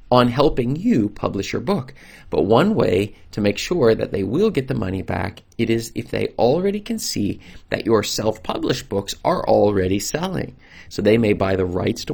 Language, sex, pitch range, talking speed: English, male, 95-120 Hz, 200 wpm